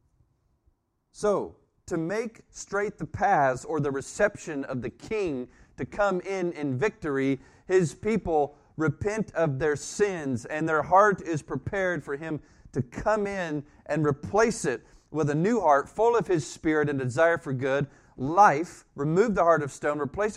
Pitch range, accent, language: 110-160 Hz, American, English